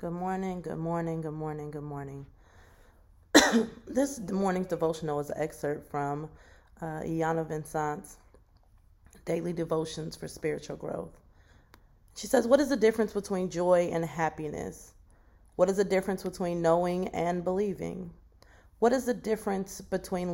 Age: 30-49